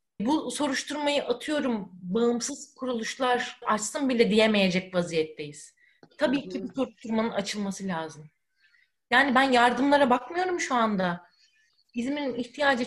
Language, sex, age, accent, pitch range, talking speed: Turkish, female, 30-49, native, 195-250 Hz, 105 wpm